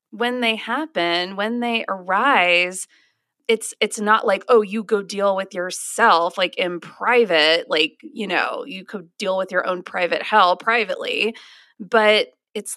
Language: English